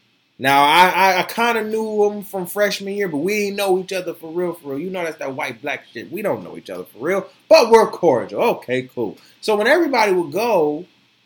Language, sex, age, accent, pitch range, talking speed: English, male, 20-39, American, 180-270 Hz, 235 wpm